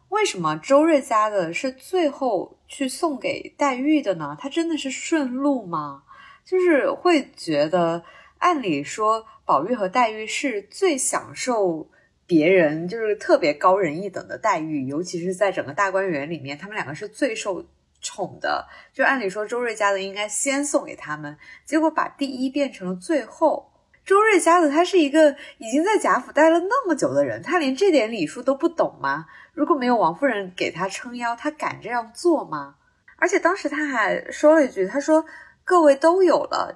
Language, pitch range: Chinese, 195-315 Hz